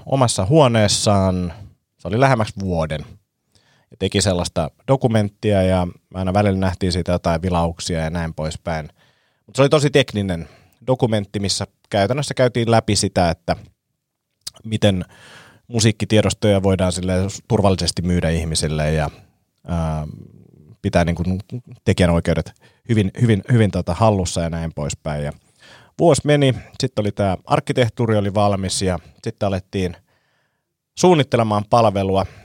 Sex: male